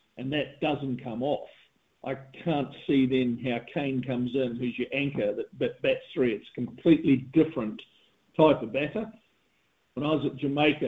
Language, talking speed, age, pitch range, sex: English, 170 wpm, 50-69, 130-165 Hz, male